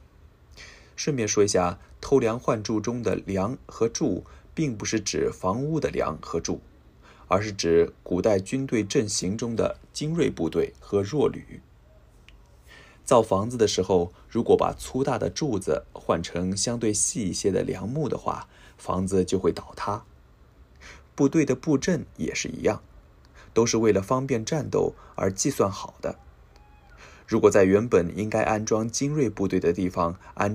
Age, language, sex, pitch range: 20-39, Japanese, male, 65-115 Hz